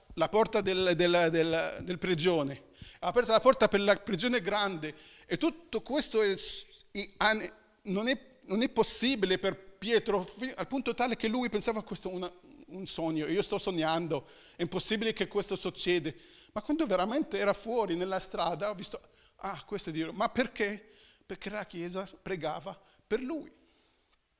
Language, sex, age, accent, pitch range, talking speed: Italian, male, 40-59, native, 175-220 Hz, 160 wpm